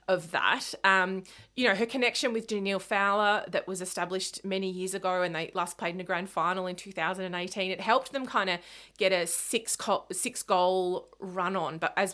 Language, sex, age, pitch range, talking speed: English, female, 30-49, 180-230 Hz, 205 wpm